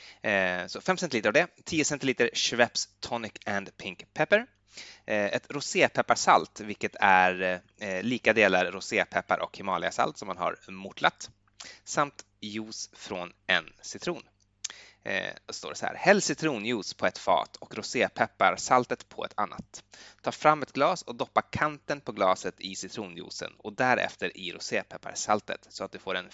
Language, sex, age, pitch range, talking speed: Swedish, male, 20-39, 95-140 Hz, 145 wpm